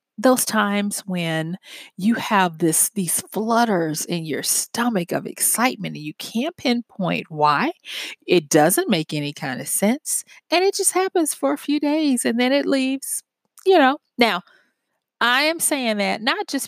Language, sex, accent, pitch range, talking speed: English, female, American, 180-265 Hz, 165 wpm